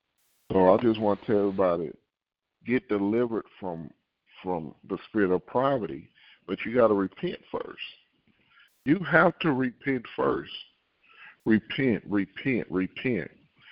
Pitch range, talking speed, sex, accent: 95-115 Hz, 125 wpm, male, American